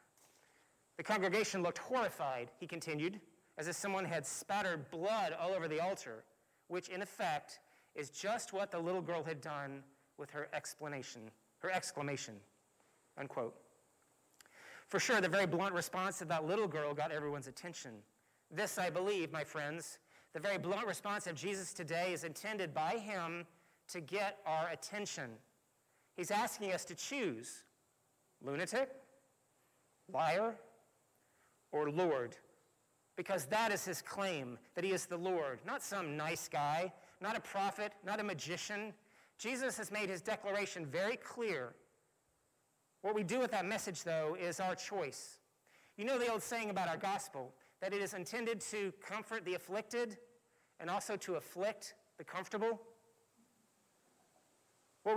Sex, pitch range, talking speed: male, 160-210 Hz, 145 wpm